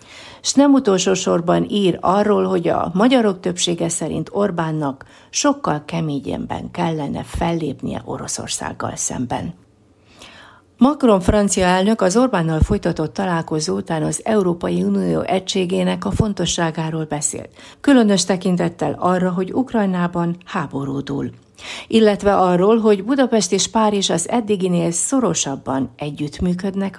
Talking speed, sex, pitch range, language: 110 wpm, female, 150-200 Hz, Hungarian